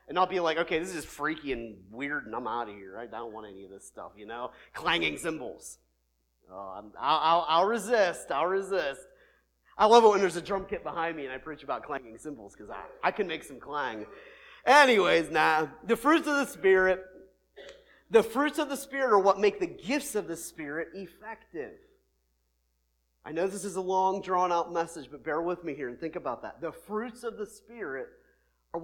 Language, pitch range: English, 120-195 Hz